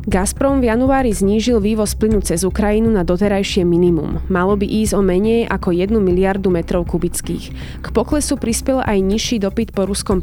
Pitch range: 180-215 Hz